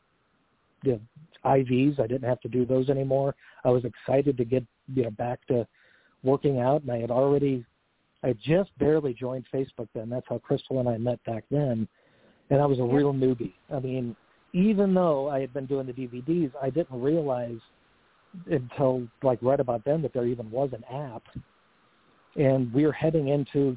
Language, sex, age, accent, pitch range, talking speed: English, male, 50-69, American, 120-140 Hz, 180 wpm